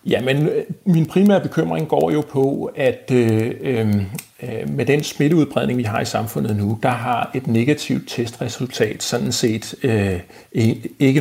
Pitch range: 115-140 Hz